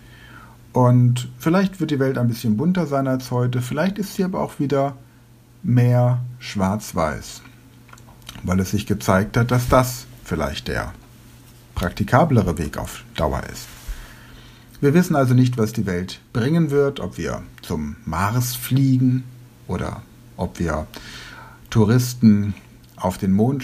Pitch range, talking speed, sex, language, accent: 105-130 Hz, 135 wpm, male, German, German